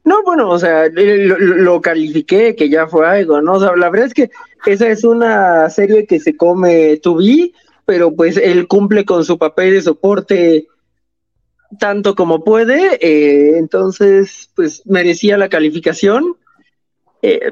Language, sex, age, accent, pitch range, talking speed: Spanish, male, 30-49, Mexican, 175-225 Hz, 160 wpm